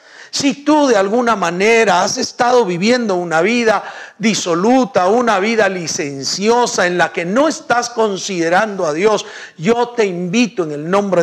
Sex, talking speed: male, 150 wpm